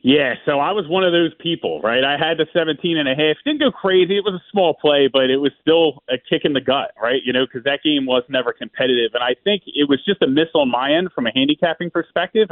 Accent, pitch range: American, 120-160 Hz